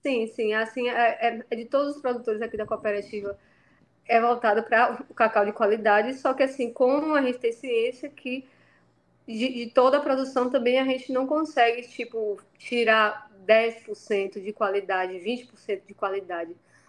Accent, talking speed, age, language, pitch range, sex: Brazilian, 165 wpm, 20-39, Portuguese, 215-255 Hz, female